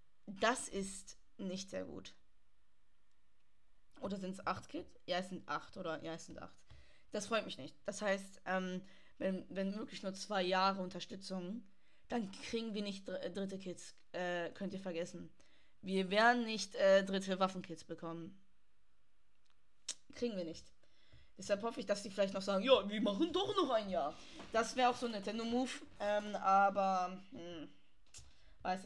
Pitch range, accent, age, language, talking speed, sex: 185-240 Hz, German, 10-29, German, 165 wpm, female